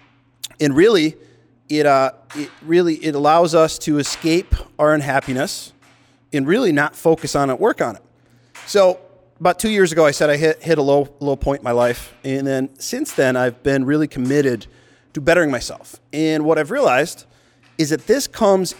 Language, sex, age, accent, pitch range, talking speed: English, male, 30-49, American, 130-155 Hz, 185 wpm